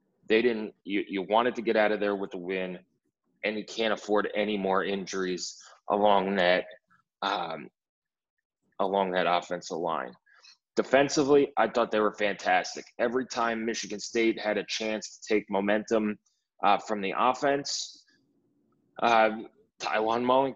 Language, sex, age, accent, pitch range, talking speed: English, male, 20-39, American, 100-115 Hz, 145 wpm